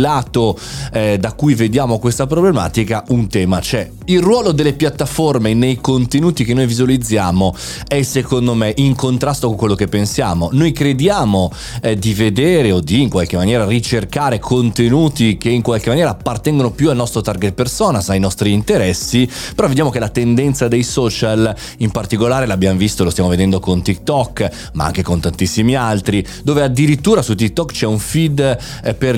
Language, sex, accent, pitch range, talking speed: Italian, male, native, 100-130 Hz, 170 wpm